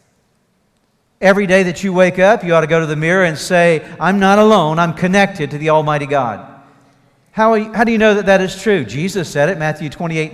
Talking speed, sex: 230 wpm, male